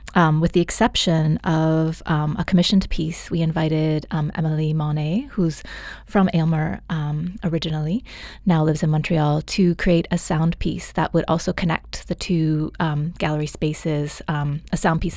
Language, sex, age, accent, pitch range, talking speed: English, female, 20-39, American, 155-175 Hz, 160 wpm